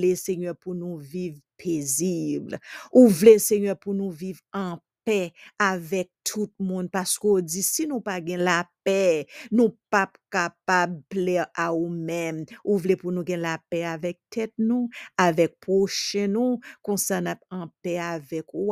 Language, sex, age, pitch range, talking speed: English, female, 50-69, 170-220 Hz, 160 wpm